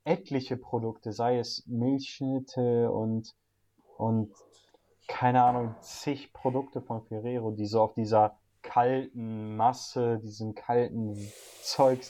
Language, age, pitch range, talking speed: German, 30-49, 105-130 Hz, 110 wpm